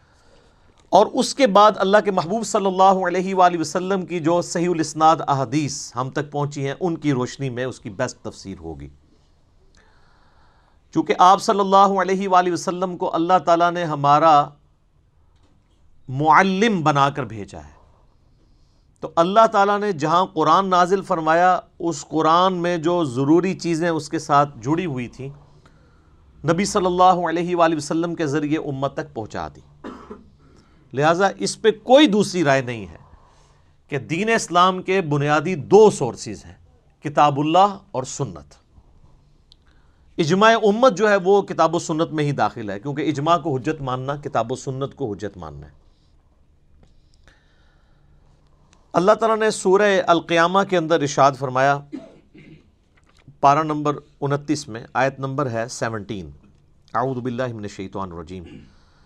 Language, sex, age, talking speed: Urdu, male, 40-59, 145 wpm